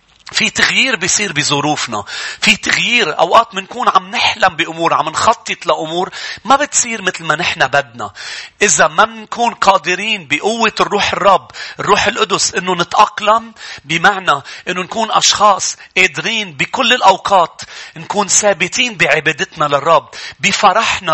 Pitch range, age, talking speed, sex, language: 175-225 Hz, 40-59, 120 wpm, male, English